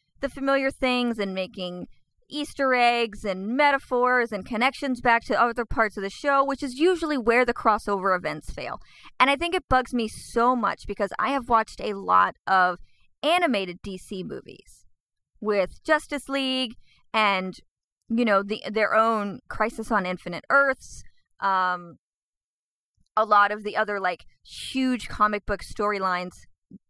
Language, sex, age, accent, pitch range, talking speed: English, female, 30-49, American, 205-270 Hz, 150 wpm